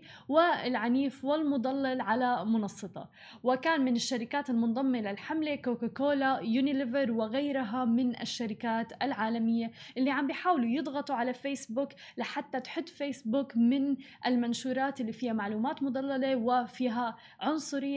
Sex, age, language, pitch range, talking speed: female, 10-29, Arabic, 235-280 Hz, 105 wpm